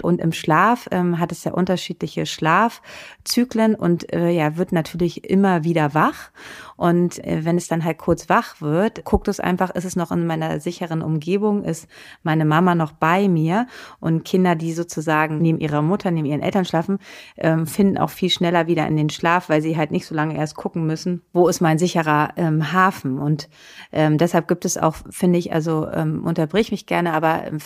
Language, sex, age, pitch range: German, female, 30-49, 160-185 Hz